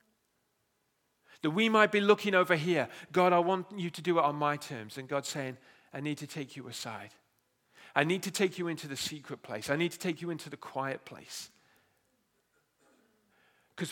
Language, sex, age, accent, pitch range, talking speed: English, male, 40-59, British, 145-185 Hz, 195 wpm